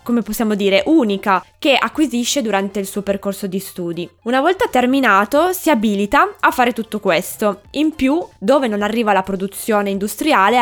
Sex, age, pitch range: female, 20-39, 195-255 Hz